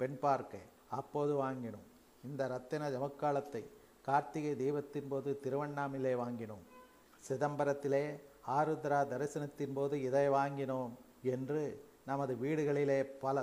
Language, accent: Tamil, native